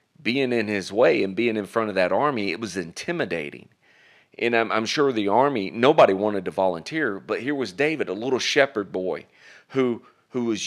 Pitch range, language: 100-130 Hz, English